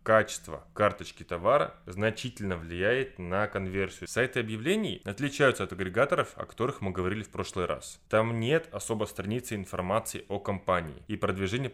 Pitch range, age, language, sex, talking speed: 95-115 Hz, 20-39, Russian, male, 145 wpm